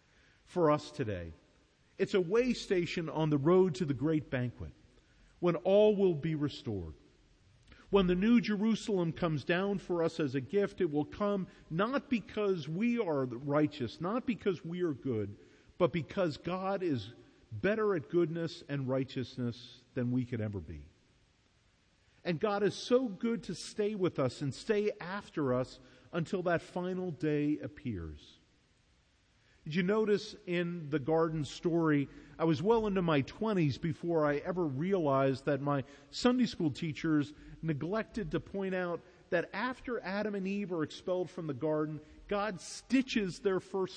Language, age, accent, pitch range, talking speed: English, 50-69, American, 145-195 Hz, 155 wpm